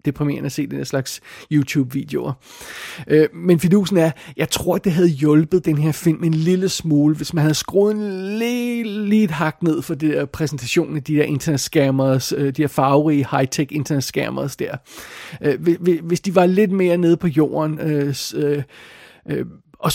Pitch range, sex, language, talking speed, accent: 145-180 Hz, male, Danish, 180 wpm, native